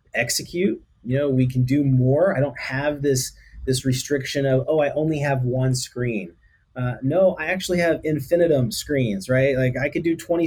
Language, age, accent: English, 30-49, American